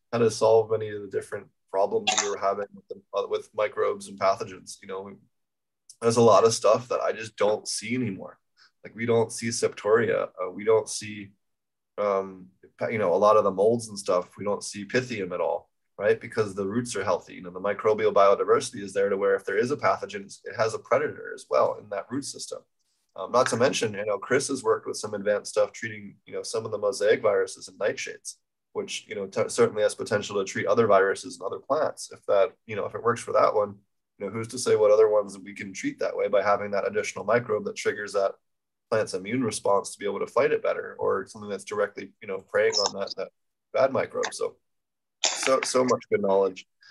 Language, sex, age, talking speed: English, male, 20-39, 230 wpm